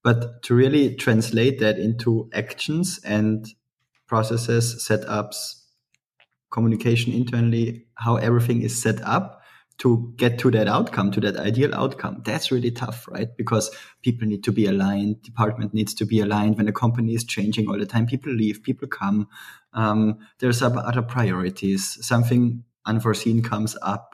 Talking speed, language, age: 150 wpm, English, 20-39